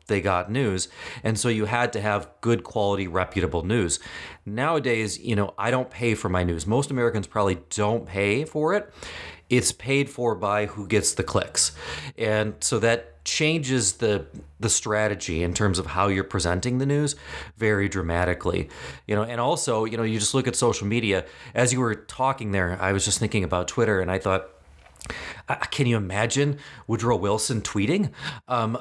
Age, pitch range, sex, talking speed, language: 30-49, 100-125 Hz, male, 180 wpm, English